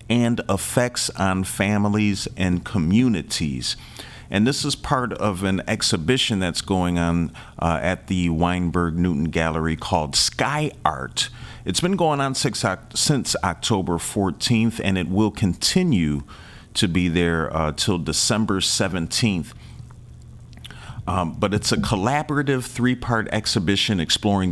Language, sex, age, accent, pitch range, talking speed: English, male, 40-59, American, 90-115 Hz, 130 wpm